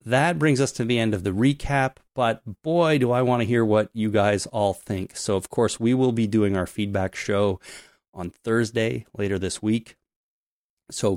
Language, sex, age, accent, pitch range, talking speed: English, male, 30-49, American, 100-120 Hz, 200 wpm